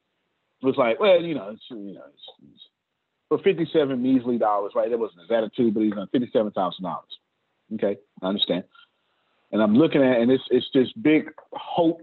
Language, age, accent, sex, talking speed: English, 40-59, American, male, 180 wpm